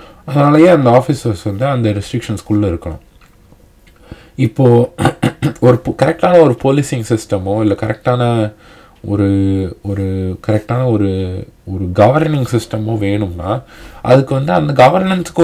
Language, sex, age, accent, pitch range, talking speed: Tamil, male, 20-39, native, 100-125 Hz, 100 wpm